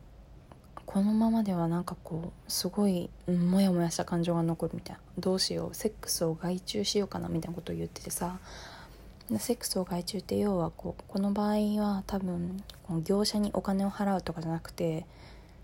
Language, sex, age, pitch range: Japanese, female, 20-39, 170-205 Hz